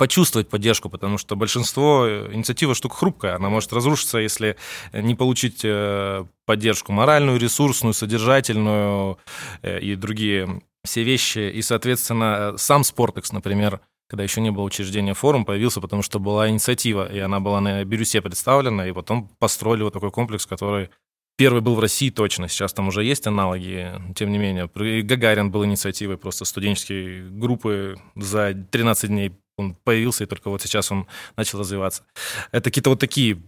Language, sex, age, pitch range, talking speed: Russian, male, 20-39, 100-120 Hz, 155 wpm